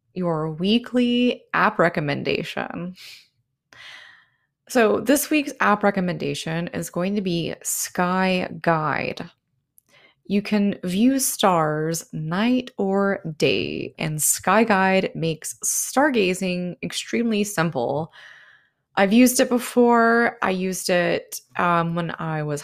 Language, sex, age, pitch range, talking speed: English, female, 20-39, 160-210 Hz, 105 wpm